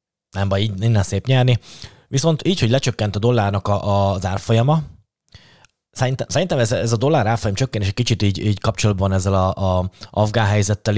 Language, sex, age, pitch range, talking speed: Hungarian, male, 20-39, 95-115 Hz, 175 wpm